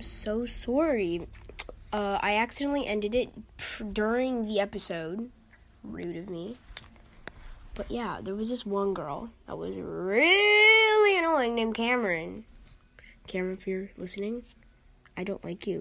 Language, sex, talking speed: English, female, 130 wpm